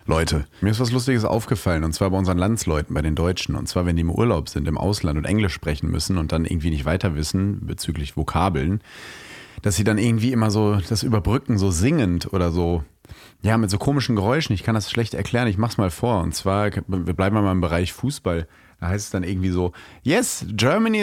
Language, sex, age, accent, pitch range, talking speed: German, male, 30-49, German, 100-145 Hz, 220 wpm